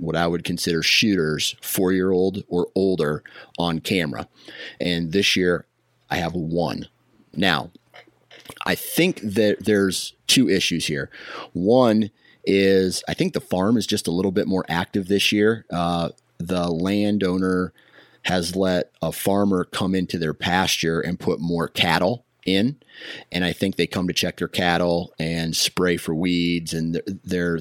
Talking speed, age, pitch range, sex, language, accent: 155 wpm, 30-49, 85-95 Hz, male, English, American